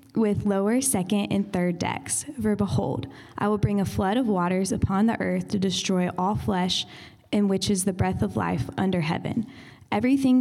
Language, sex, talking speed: English, female, 185 wpm